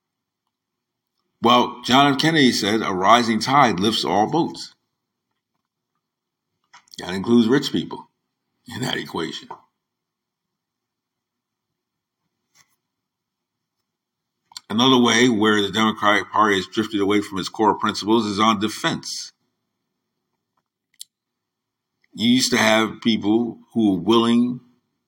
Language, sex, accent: English, male, American